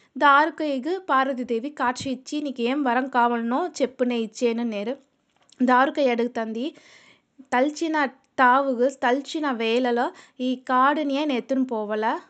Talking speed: 110 wpm